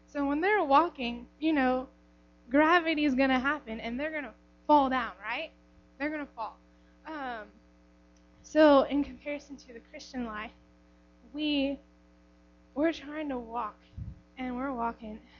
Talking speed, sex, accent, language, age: 140 wpm, female, American, English, 10-29